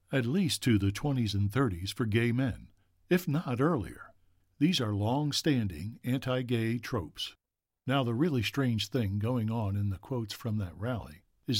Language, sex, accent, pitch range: English, male, American, 100-135 Hz